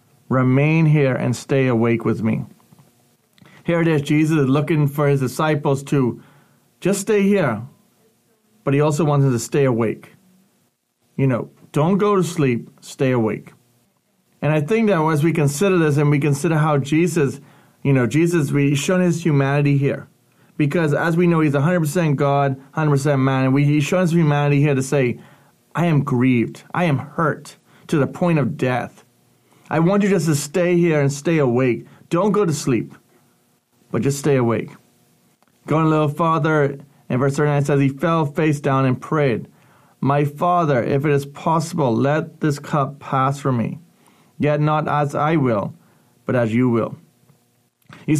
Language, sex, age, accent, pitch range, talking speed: English, male, 30-49, American, 140-170 Hz, 170 wpm